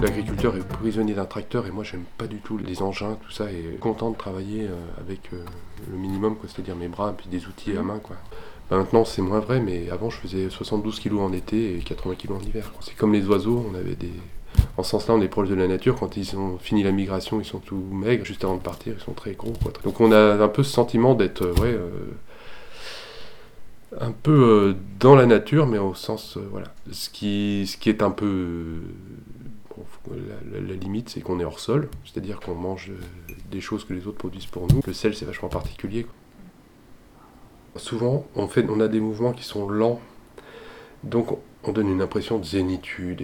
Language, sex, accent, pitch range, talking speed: French, male, French, 95-115 Hz, 220 wpm